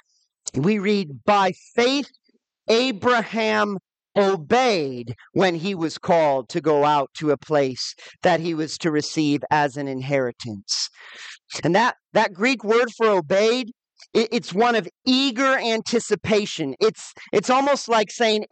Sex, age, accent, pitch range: male, 40-59, American, 190-250 Hz